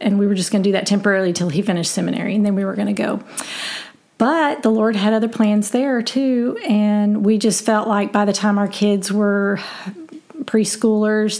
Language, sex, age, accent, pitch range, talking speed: English, female, 40-59, American, 200-230 Hz, 210 wpm